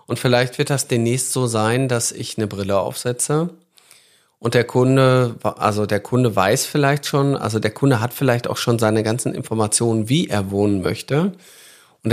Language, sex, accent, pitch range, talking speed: German, male, German, 110-135 Hz, 180 wpm